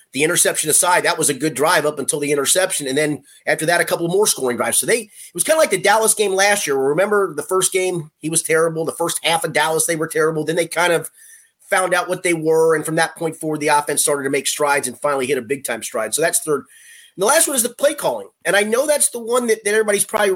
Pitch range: 160-220 Hz